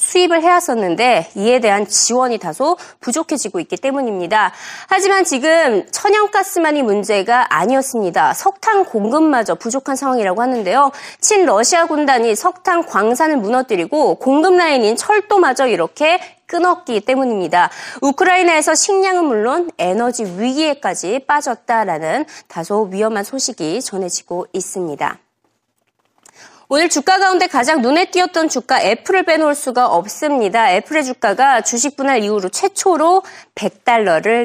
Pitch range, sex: 230-345 Hz, female